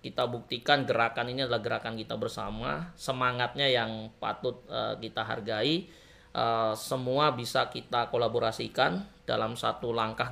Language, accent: Indonesian, native